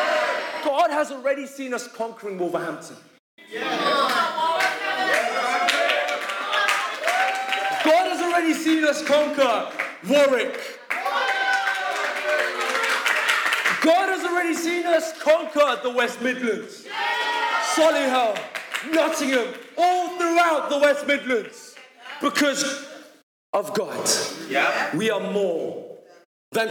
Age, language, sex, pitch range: 30-49, English, male, 225-340 Hz